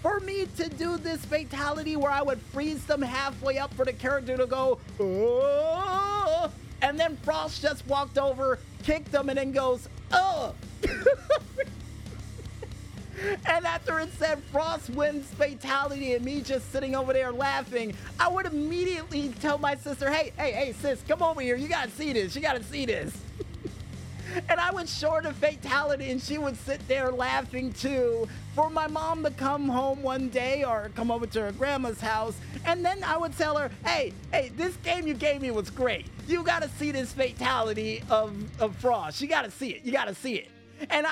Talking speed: 185 wpm